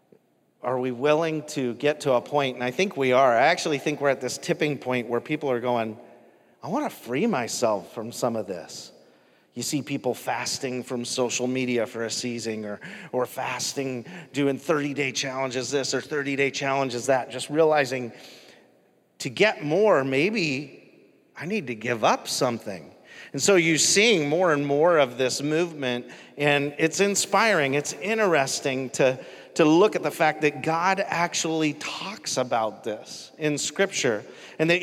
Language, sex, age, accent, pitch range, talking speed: English, male, 40-59, American, 130-160 Hz, 170 wpm